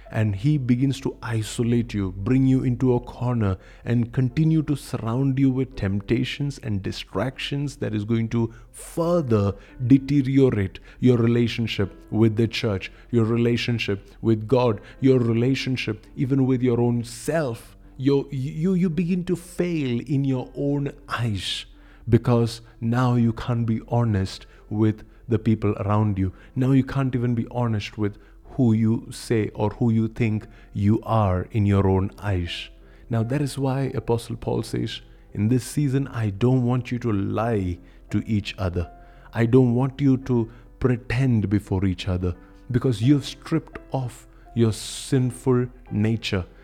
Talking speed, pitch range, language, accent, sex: 150 wpm, 105-130 Hz, English, Indian, male